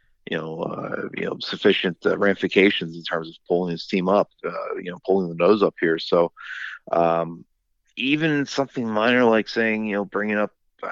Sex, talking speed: male, 190 wpm